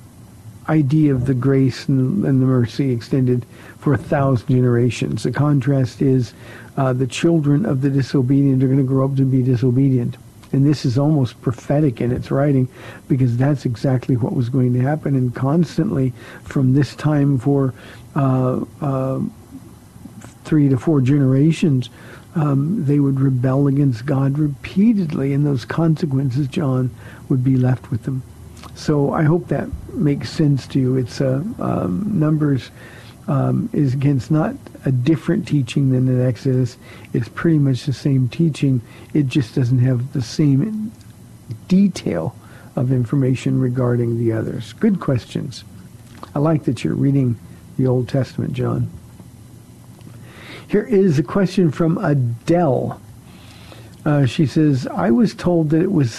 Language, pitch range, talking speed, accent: English, 125-150 Hz, 150 wpm, American